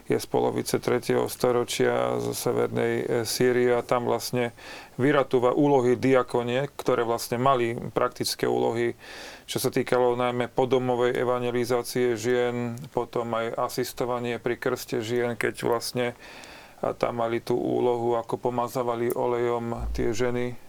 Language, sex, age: Slovak, male, 40-59